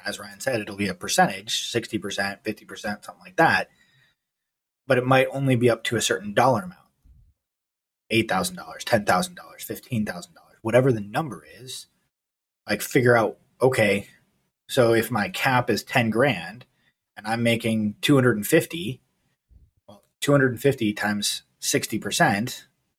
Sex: male